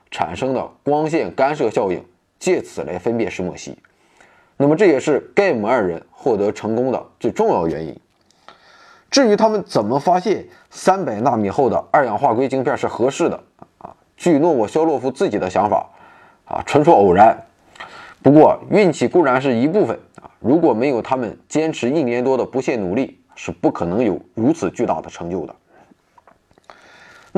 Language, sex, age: Chinese, male, 20-39